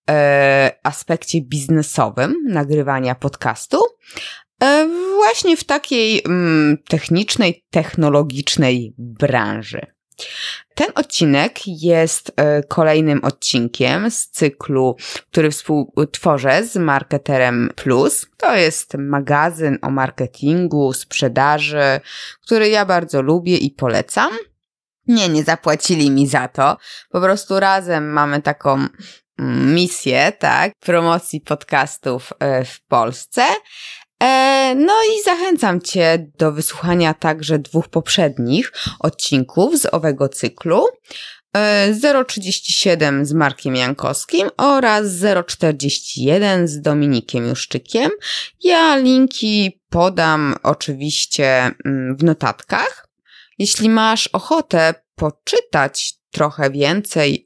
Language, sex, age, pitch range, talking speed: Polish, female, 20-39, 140-205 Hz, 90 wpm